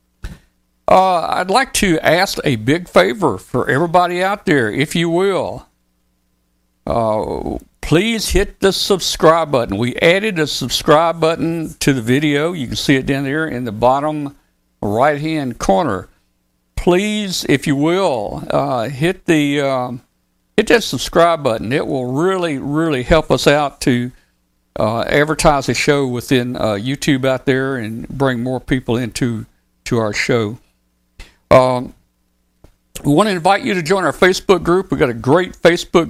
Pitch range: 115-160 Hz